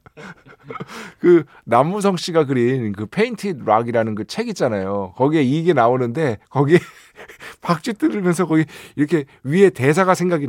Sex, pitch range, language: male, 110-180 Hz, Korean